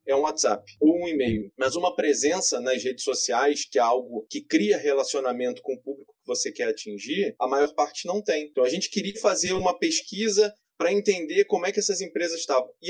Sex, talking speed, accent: male, 215 wpm, Brazilian